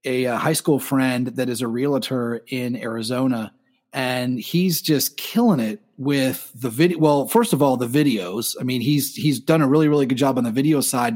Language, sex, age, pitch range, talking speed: English, male, 30-49, 130-155 Hz, 205 wpm